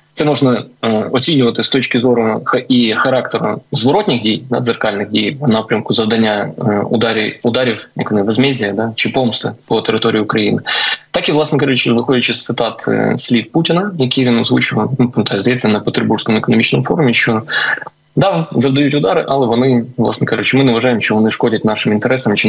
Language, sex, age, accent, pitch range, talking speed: Ukrainian, male, 20-39, native, 110-130 Hz, 155 wpm